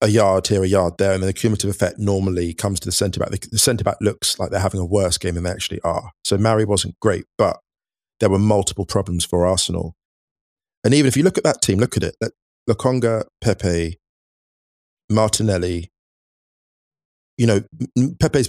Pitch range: 95-115 Hz